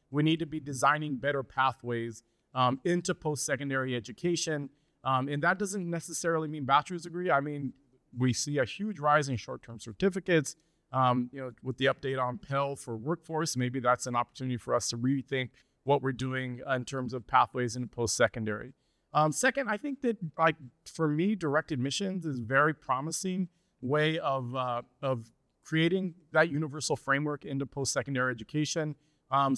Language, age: English, 30-49